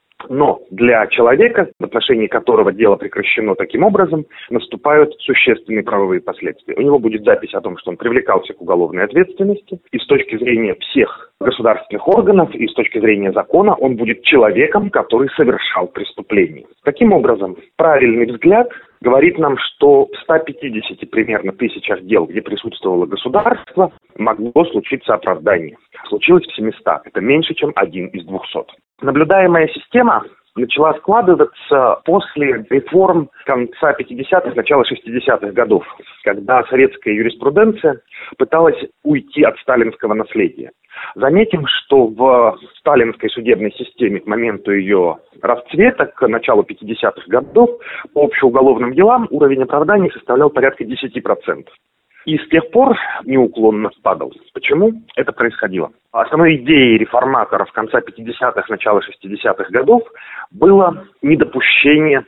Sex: male